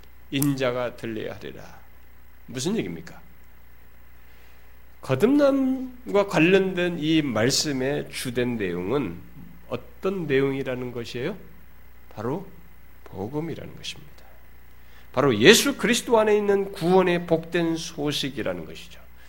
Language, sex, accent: Korean, male, native